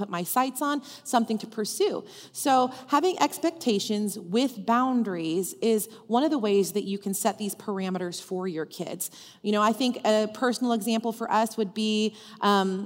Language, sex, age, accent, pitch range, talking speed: English, female, 30-49, American, 185-235 Hz, 175 wpm